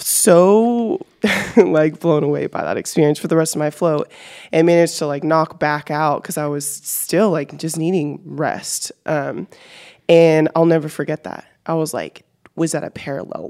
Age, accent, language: 20-39, American, English